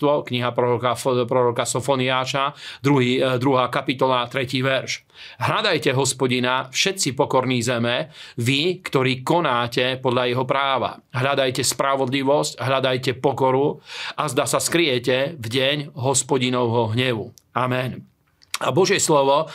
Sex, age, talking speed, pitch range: male, 40-59, 105 wpm, 130-145 Hz